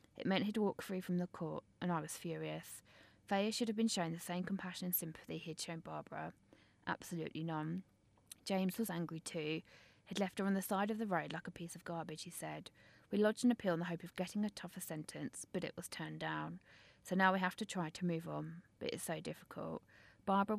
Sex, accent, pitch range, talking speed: female, British, 160-195 Hz, 225 wpm